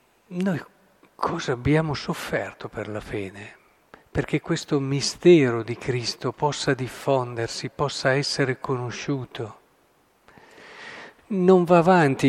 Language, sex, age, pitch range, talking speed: Italian, male, 50-69, 130-155 Hz, 100 wpm